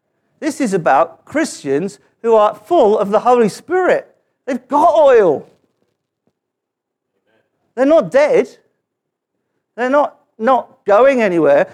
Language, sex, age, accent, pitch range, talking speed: English, male, 50-69, British, 185-250 Hz, 110 wpm